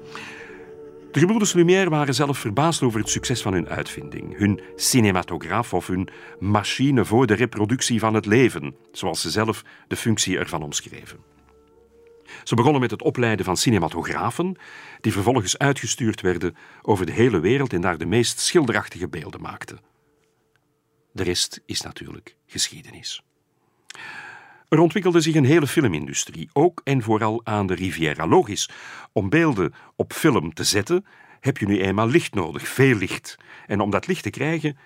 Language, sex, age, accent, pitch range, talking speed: Dutch, male, 50-69, Belgian, 90-140 Hz, 155 wpm